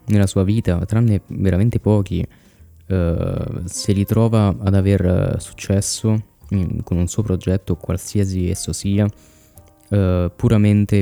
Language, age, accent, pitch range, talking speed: Italian, 20-39, native, 95-110 Hz, 120 wpm